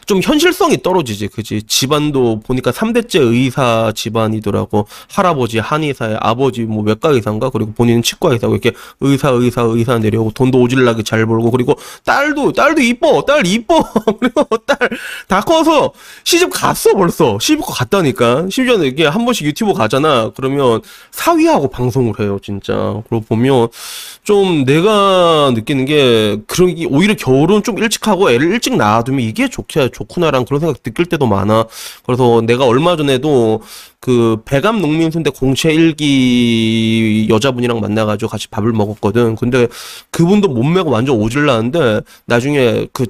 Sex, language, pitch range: male, Korean, 115-185 Hz